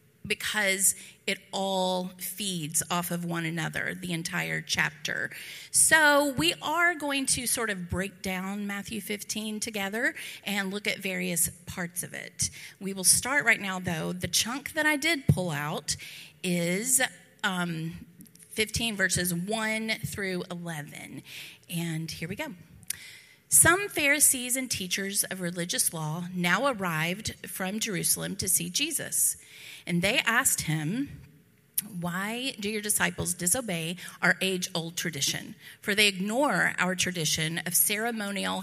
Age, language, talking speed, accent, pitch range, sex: 30-49, English, 135 wpm, American, 170-225 Hz, female